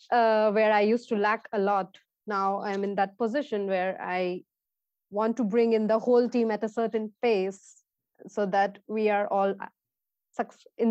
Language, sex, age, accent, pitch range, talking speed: English, female, 20-39, Indian, 195-235 Hz, 175 wpm